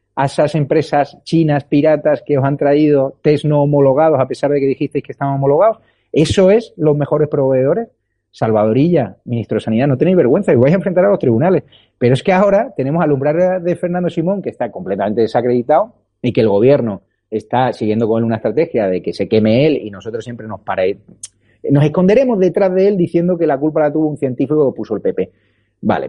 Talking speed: 205 wpm